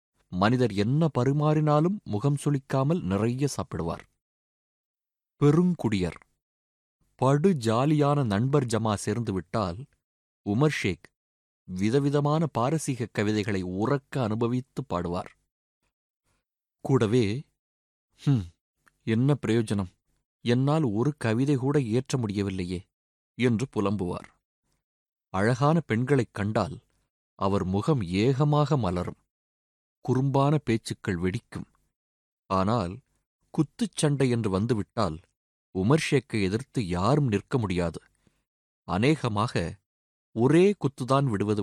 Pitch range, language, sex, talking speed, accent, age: 95-140 Hz, Tamil, male, 80 wpm, native, 30-49